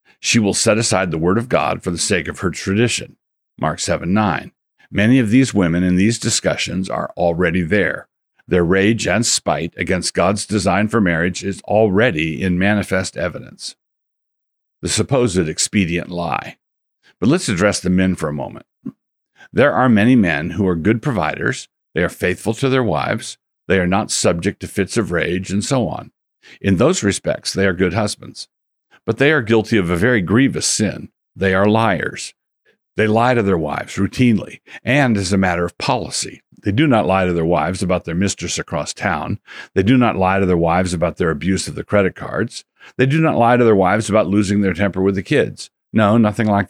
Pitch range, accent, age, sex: 90-110 Hz, American, 60-79, male